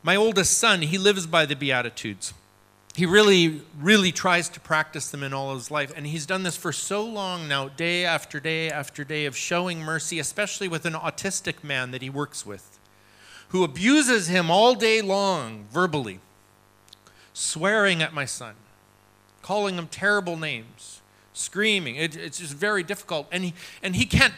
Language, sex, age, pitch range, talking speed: Swedish, male, 40-59, 115-185 Hz, 165 wpm